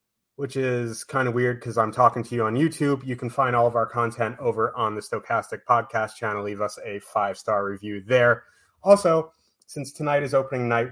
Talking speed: 205 wpm